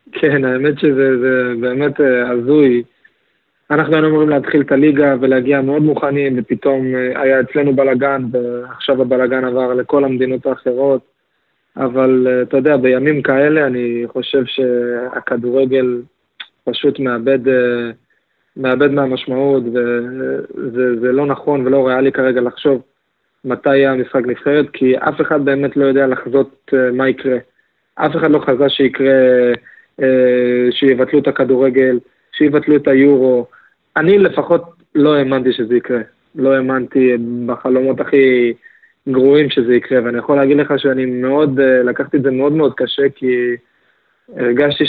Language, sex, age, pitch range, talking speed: Hebrew, male, 20-39, 125-140 Hz, 120 wpm